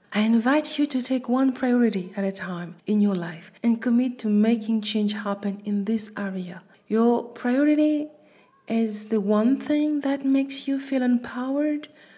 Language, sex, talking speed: French, female, 165 wpm